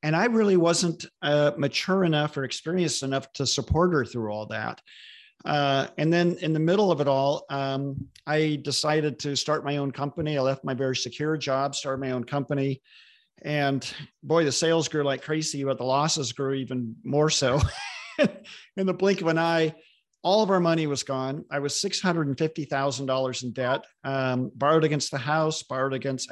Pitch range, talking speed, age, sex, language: 135-155 Hz, 195 wpm, 50-69, male, English